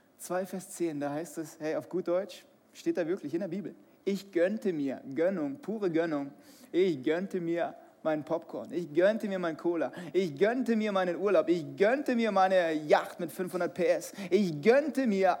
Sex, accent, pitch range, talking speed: male, German, 170-275 Hz, 185 wpm